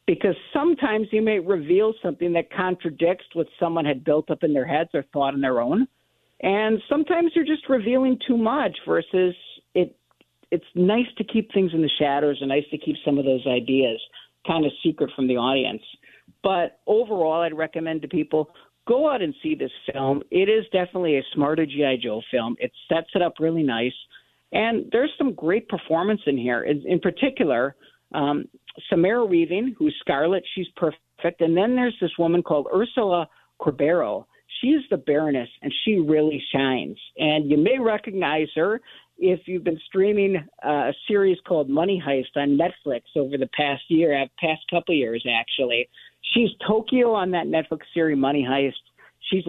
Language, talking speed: English, 175 wpm